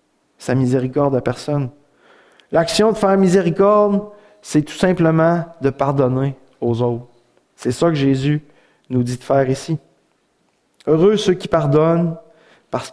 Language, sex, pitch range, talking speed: French, male, 145-200 Hz, 135 wpm